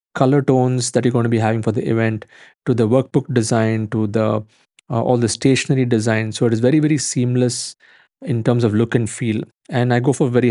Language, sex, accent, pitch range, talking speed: English, male, Indian, 115-135 Hz, 225 wpm